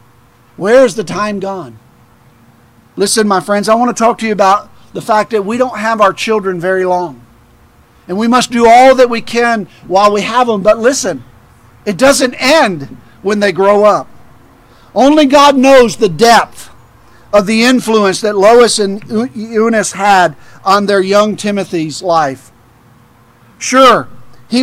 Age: 50-69